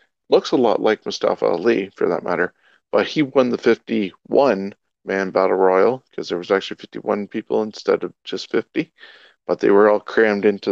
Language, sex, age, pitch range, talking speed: English, male, 40-59, 100-125 Hz, 180 wpm